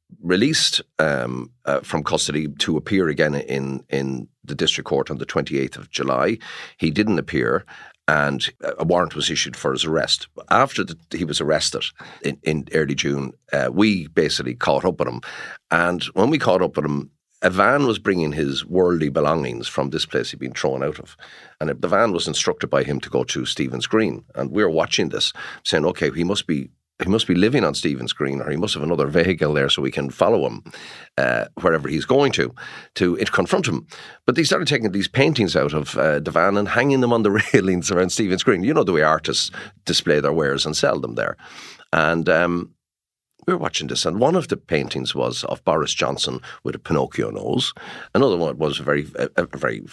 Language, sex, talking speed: English, male, 210 wpm